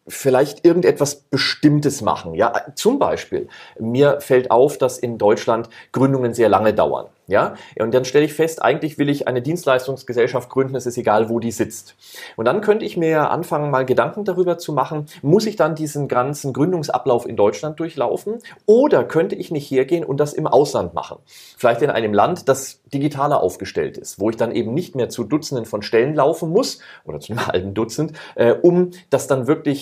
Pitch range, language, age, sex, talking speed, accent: 120-160 Hz, German, 30-49, male, 190 wpm, German